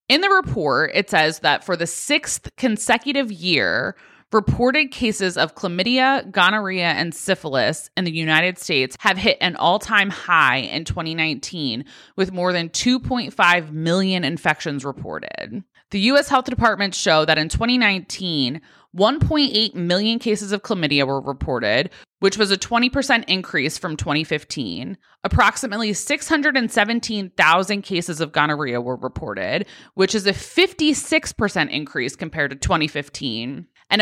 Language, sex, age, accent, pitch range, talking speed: English, female, 20-39, American, 160-230 Hz, 130 wpm